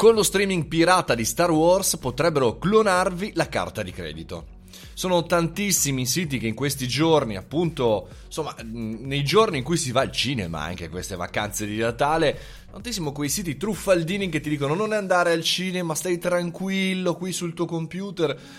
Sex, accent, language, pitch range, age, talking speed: male, native, Italian, 105-155 Hz, 20-39, 170 wpm